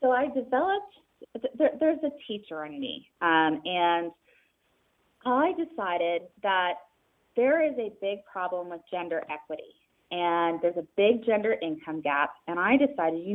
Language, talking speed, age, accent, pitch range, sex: English, 150 wpm, 30-49, American, 170-240 Hz, female